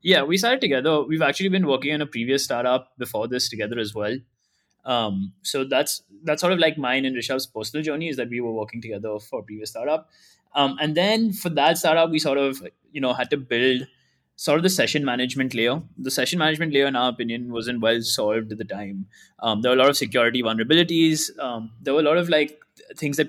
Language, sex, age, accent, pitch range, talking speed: English, male, 20-39, Indian, 115-150 Hz, 230 wpm